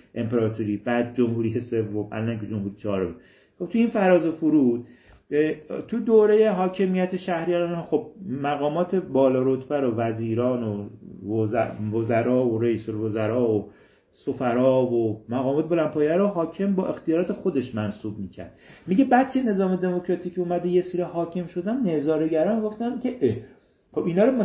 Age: 40-59